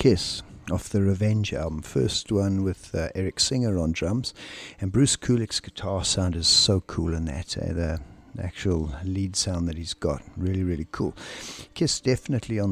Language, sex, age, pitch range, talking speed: English, male, 60-79, 90-105 Hz, 175 wpm